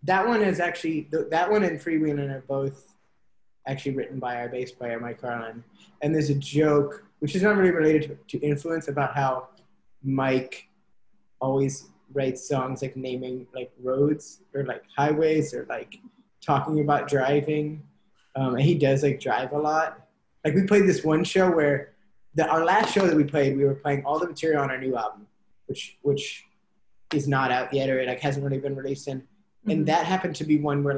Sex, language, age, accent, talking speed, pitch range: male, English, 20-39, American, 195 wpm, 135-160 Hz